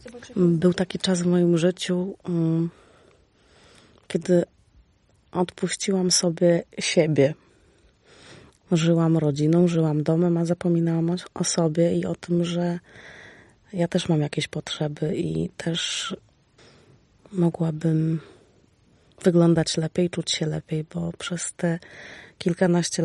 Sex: female